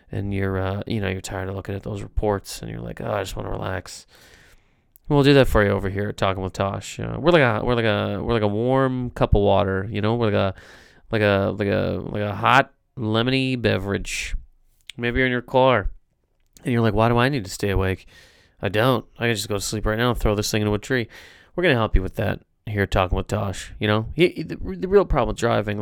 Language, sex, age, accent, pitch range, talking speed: English, male, 30-49, American, 100-130 Hz, 265 wpm